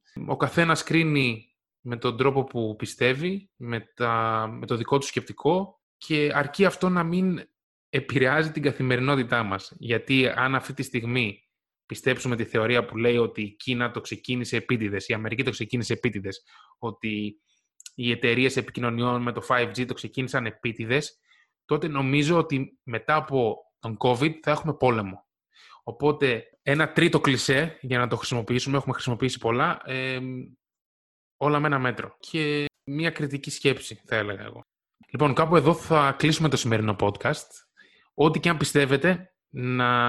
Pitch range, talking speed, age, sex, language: 115-150 Hz, 150 wpm, 20-39, male, Greek